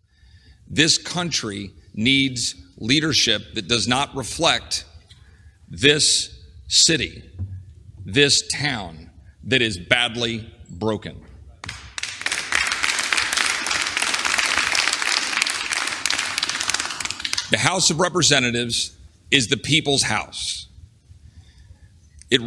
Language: English